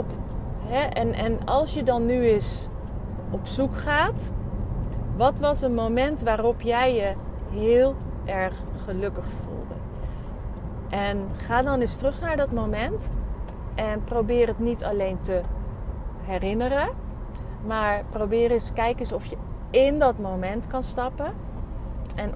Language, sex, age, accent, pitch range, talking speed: Dutch, female, 40-59, Dutch, 180-250 Hz, 135 wpm